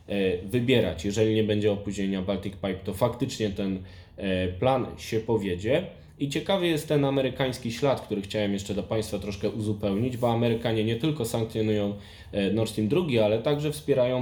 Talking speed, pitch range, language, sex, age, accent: 155 wpm, 100-115 Hz, Polish, male, 10-29, native